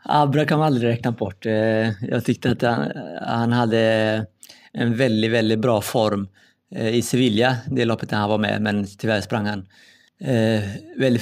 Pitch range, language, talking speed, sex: 110-125 Hz, Swedish, 155 wpm, male